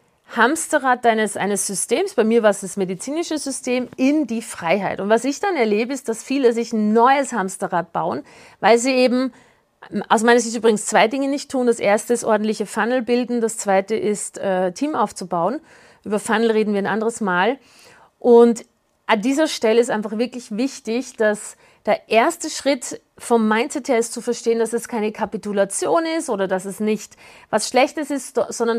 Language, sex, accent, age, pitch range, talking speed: German, female, German, 40-59, 215-265 Hz, 185 wpm